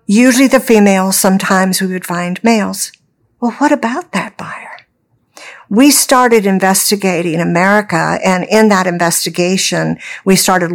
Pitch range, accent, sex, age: 175-230 Hz, American, female, 50-69